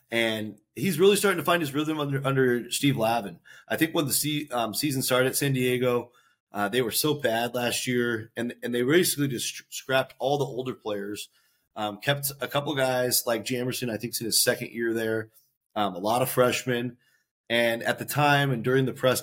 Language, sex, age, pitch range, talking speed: English, male, 30-49, 105-130 Hz, 210 wpm